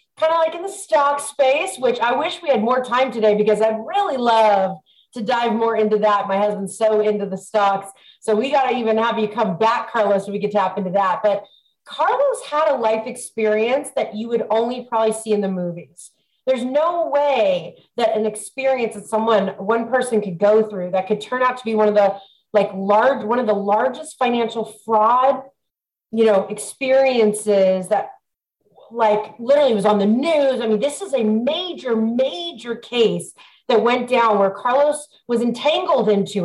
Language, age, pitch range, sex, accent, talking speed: English, 30-49, 210-260 Hz, female, American, 195 wpm